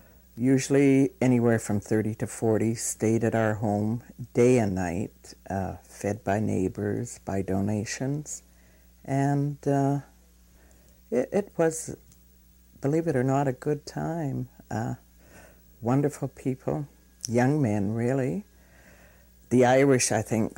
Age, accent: 60-79, American